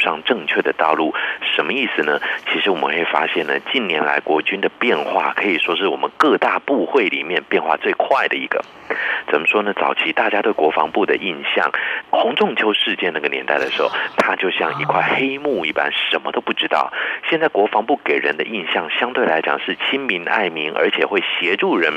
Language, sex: Chinese, male